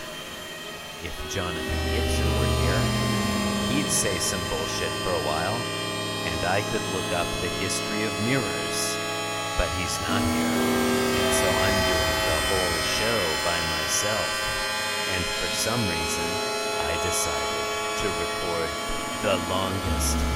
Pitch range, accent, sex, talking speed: 85-110 Hz, American, male, 130 wpm